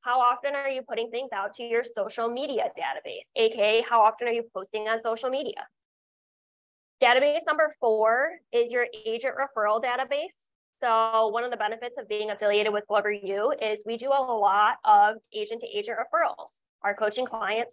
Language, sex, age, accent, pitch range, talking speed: English, female, 20-39, American, 215-285 Hz, 175 wpm